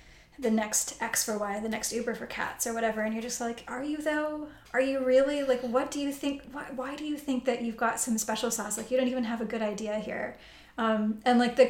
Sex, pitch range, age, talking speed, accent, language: female, 220-255 Hz, 10-29, 260 wpm, American, English